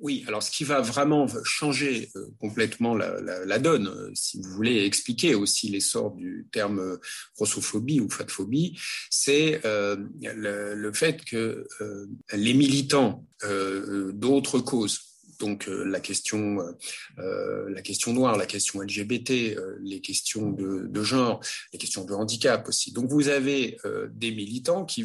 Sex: male